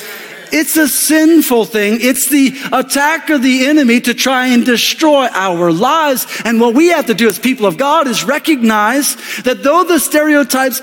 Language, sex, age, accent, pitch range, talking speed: English, male, 40-59, American, 230-285 Hz, 175 wpm